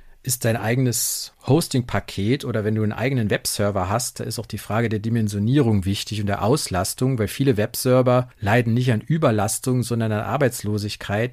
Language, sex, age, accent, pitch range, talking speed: German, male, 40-59, German, 105-125 Hz, 170 wpm